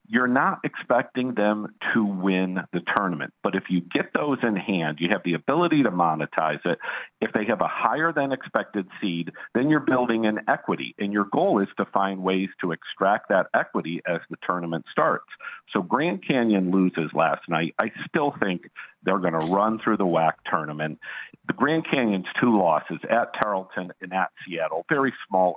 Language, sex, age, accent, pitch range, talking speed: English, male, 50-69, American, 85-100 Hz, 185 wpm